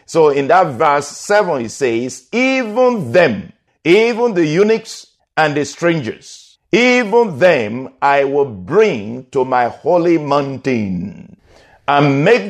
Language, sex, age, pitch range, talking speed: English, male, 50-69, 130-190 Hz, 125 wpm